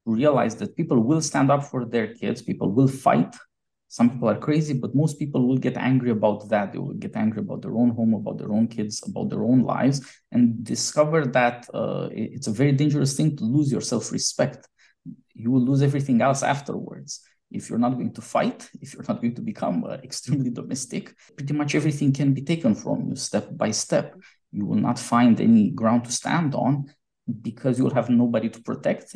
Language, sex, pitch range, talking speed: English, male, 120-145 Hz, 205 wpm